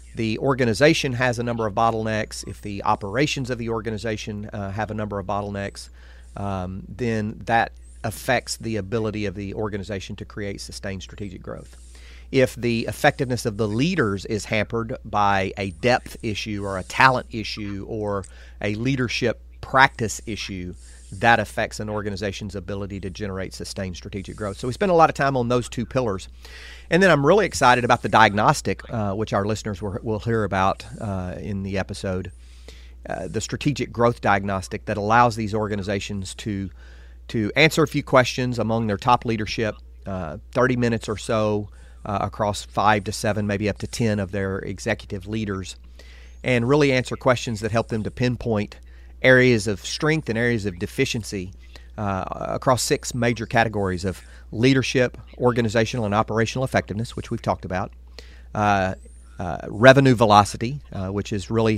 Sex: male